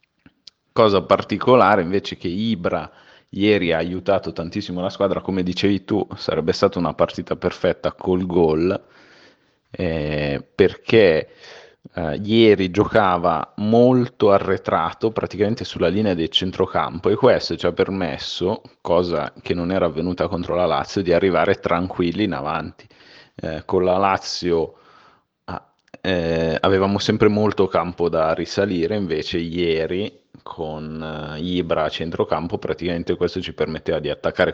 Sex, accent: male, native